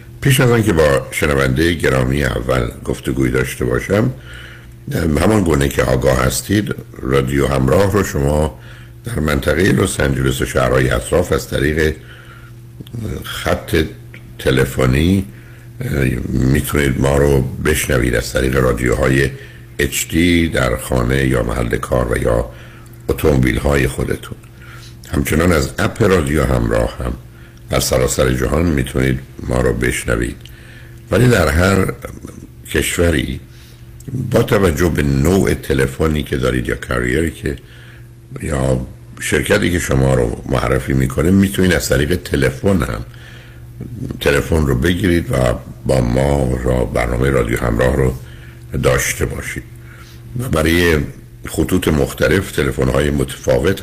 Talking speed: 120 wpm